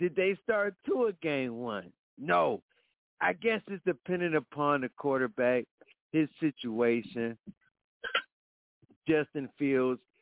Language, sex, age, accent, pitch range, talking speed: English, male, 50-69, American, 130-175 Hz, 105 wpm